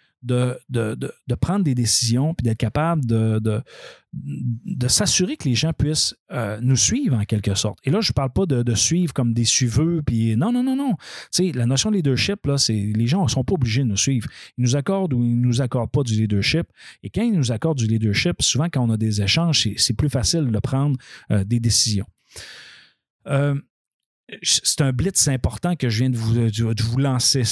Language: French